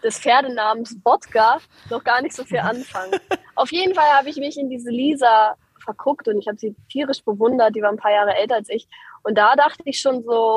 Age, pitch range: 20-39, 215-265 Hz